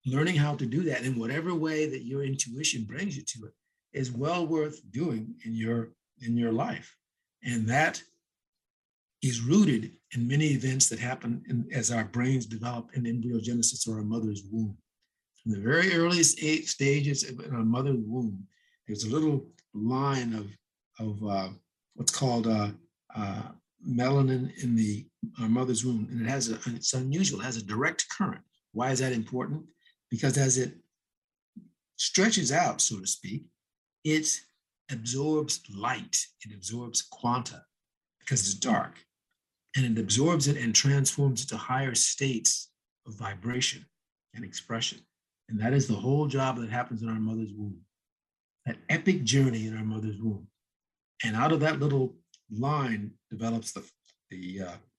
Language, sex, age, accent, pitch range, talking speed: English, male, 50-69, American, 110-140 Hz, 160 wpm